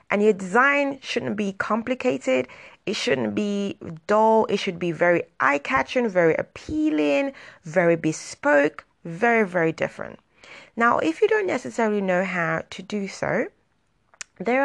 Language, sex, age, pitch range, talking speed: English, female, 30-49, 175-245 Hz, 135 wpm